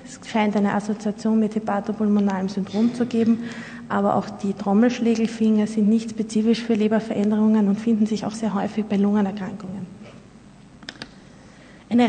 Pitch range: 210-235 Hz